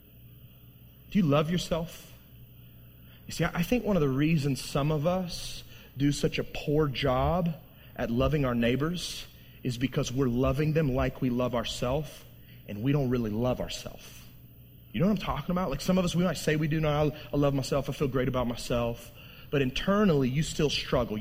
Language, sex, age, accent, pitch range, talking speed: English, male, 30-49, American, 130-170 Hz, 190 wpm